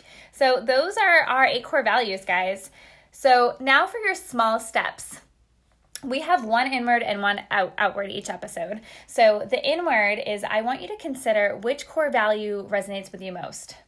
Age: 10-29